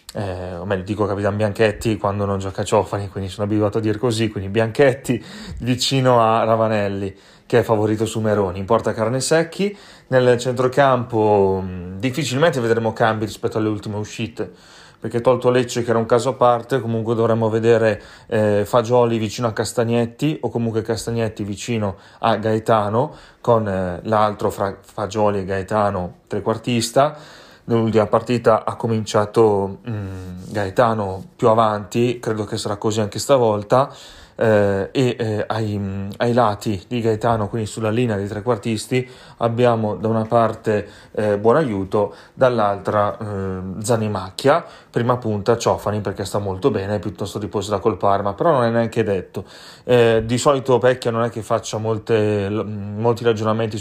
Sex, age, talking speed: male, 30-49, 155 wpm